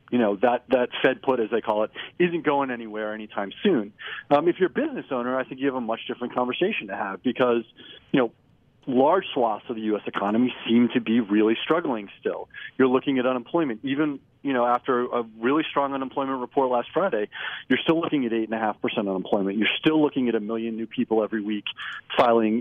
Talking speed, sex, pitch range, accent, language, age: 205 wpm, male, 110-130 Hz, American, English, 40-59